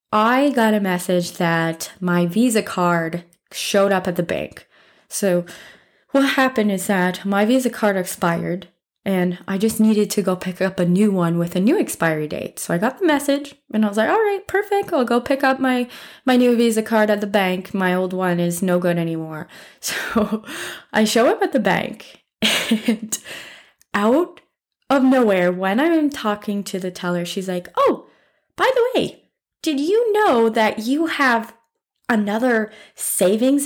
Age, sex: 20-39, female